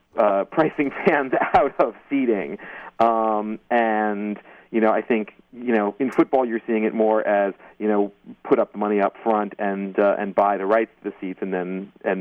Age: 40-59